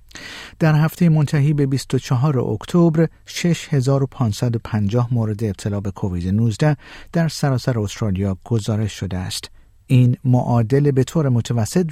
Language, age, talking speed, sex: Persian, 50-69, 115 wpm, male